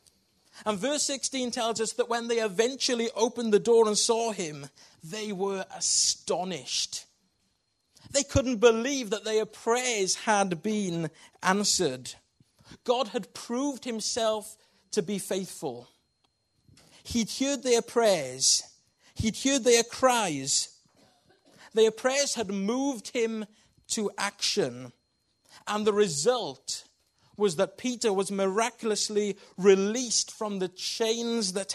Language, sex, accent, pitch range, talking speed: English, male, British, 165-230 Hz, 115 wpm